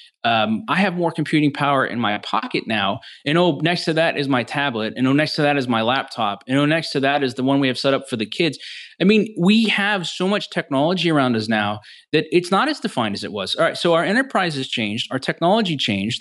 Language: English